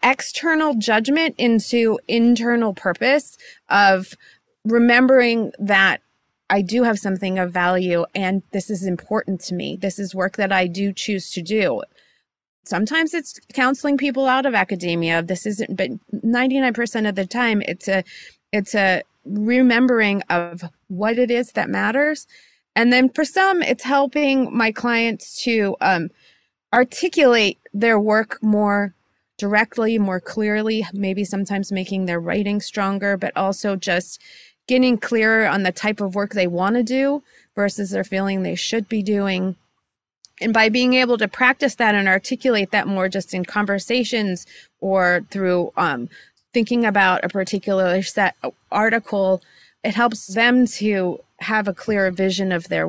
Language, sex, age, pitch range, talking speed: English, female, 30-49, 195-240 Hz, 150 wpm